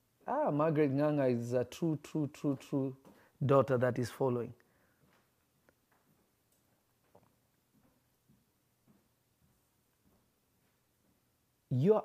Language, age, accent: English, 50-69, South African